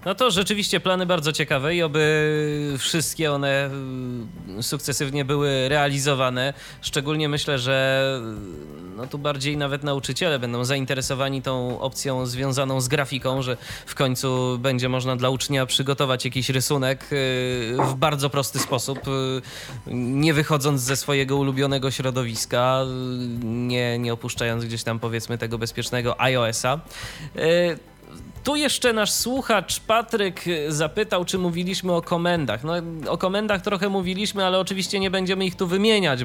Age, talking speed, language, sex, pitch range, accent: 20-39, 130 wpm, Polish, male, 125-160 Hz, native